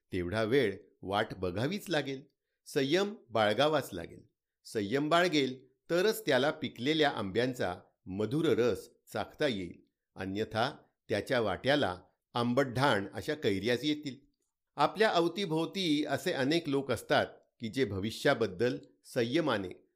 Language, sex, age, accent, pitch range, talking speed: Marathi, male, 50-69, native, 115-155 Hz, 105 wpm